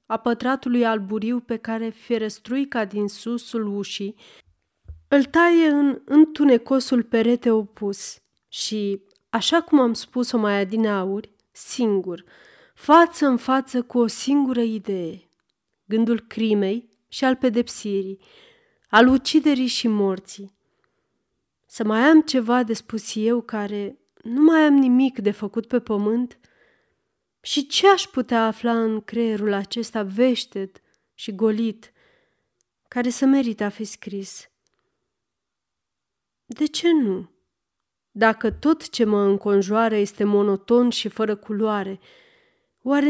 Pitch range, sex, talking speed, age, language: 205-260 Hz, female, 120 wpm, 30-49, Romanian